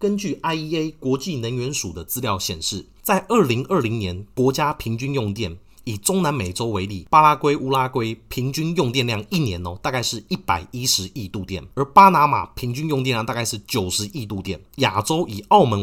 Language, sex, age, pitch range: Chinese, male, 30-49, 100-140 Hz